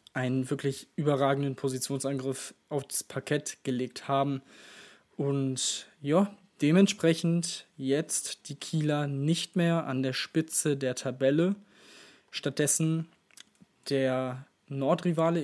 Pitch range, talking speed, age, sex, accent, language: 135-160 Hz, 95 wpm, 20-39, male, German, German